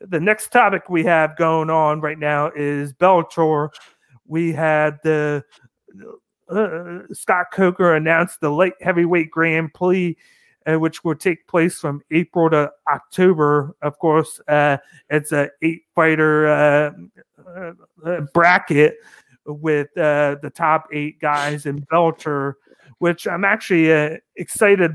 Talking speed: 130 wpm